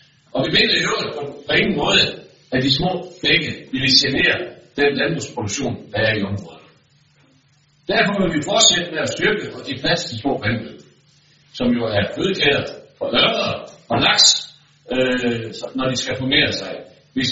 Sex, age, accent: male, 60-79, native